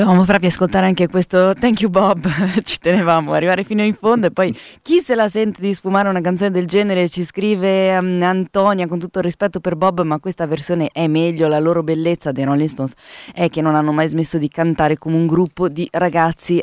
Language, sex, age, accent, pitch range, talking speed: Italian, female, 20-39, native, 160-200 Hz, 225 wpm